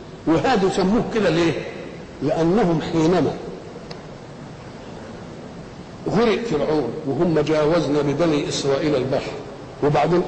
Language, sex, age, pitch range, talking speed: Arabic, male, 60-79, 150-180 Hz, 80 wpm